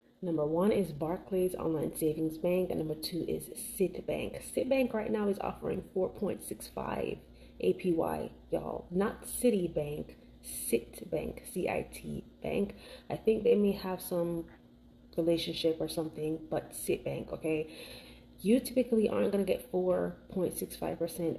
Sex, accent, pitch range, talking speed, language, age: female, American, 155-195 Hz, 120 wpm, English, 30-49